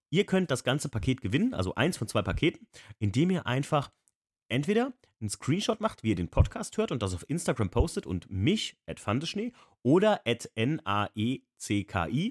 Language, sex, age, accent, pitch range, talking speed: German, male, 30-49, German, 100-140 Hz, 170 wpm